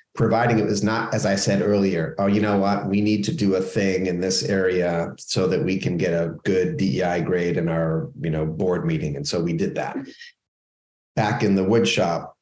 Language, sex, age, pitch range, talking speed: English, male, 30-49, 100-120 Hz, 220 wpm